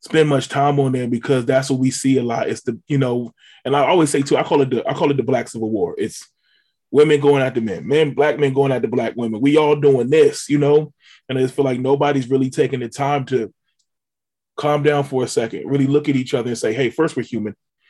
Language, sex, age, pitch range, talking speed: English, male, 20-39, 120-145 Hz, 265 wpm